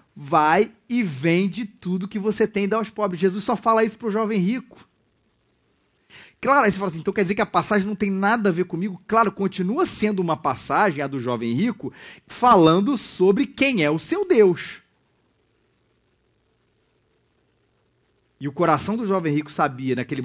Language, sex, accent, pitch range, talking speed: Portuguese, male, Brazilian, 120-185 Hz, 180 wpm